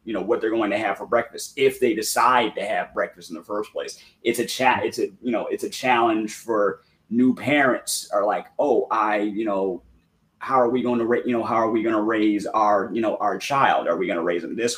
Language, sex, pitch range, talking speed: English, male, 105-125 Hz, 260 wpm